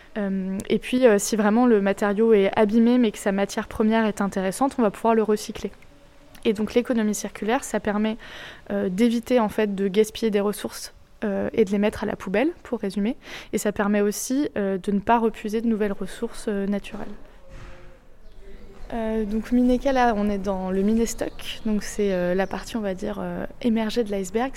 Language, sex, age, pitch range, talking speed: English, female, 20-39, 195-230 Hz, 180 wpm